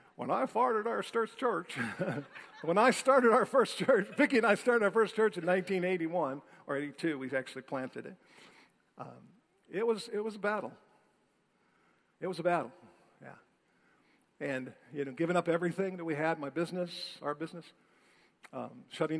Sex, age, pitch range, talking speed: male, 50-69, 155-235 Hz, 155 wpm